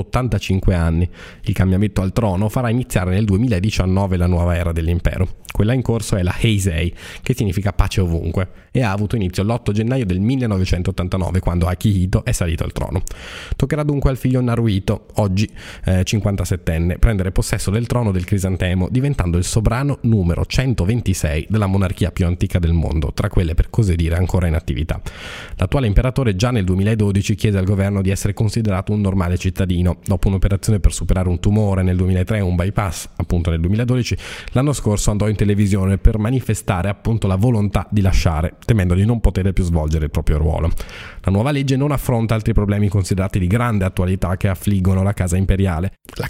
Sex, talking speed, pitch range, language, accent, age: male, 180 wpm, 90-110 Hz, Italian, native, 20-39